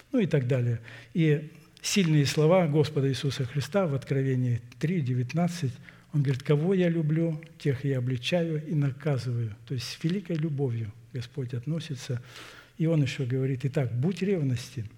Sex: male